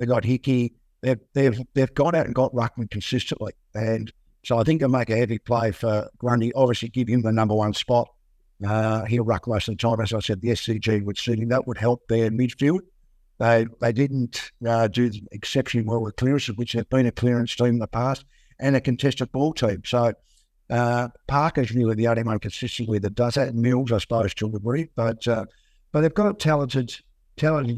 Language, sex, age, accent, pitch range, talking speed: English, male, 60-79, Australian, 110-130 Hz, 210 wpm